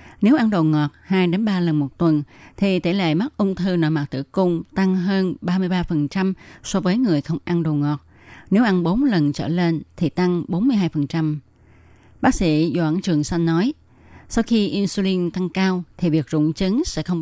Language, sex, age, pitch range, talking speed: Vietnamese, female, 20-39, 155-190 Hz, 195 wpm